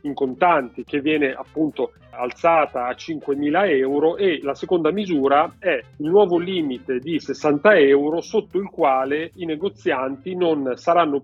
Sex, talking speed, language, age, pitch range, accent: male, 145 wpm, Italian, 40-59, 135-160 Hz, native